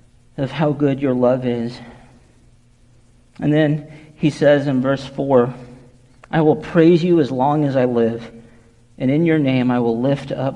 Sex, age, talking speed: male, 40-59, 170 wpm